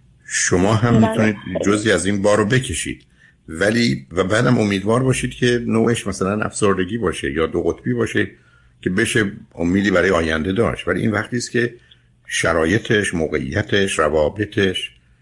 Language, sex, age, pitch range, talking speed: Persian, male, 50-69, 80-110 Hz, 145 wpm